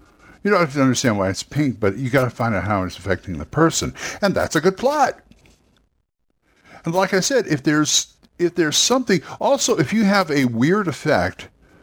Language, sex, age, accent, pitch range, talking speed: English, male, 60-79, American, 100-145 Hz, 205 wpm